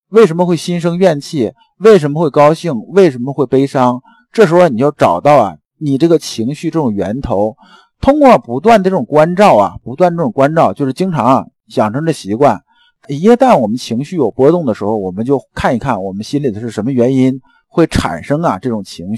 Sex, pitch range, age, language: male, 125-210 Hz, 50-69, Chinese